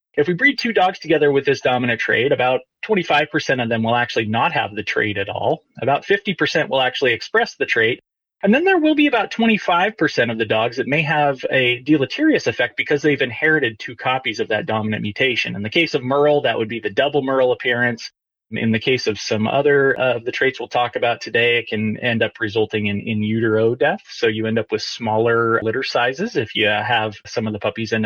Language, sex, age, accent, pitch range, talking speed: English, male, 30-49, American, 115-165 Hz, 220 wpm